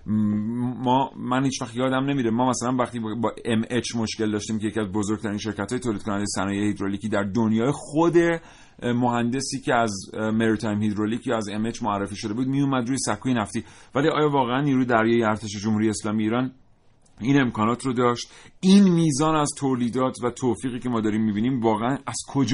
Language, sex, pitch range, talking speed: Persian, male, 105-140 Hz, 185 wpm